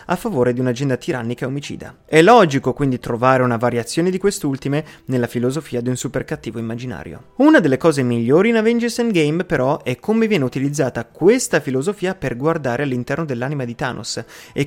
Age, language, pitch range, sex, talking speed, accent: 30-49, Italian, 125-160 Hz, male, 175 wpm, native